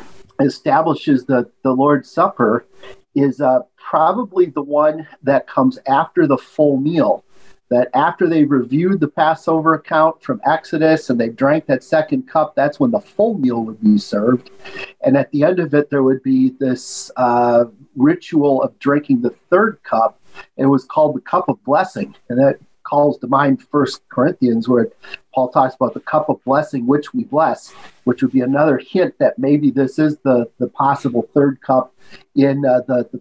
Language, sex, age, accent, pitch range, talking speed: English, male, 50-69, American, 130-165 Hz, 180 wpm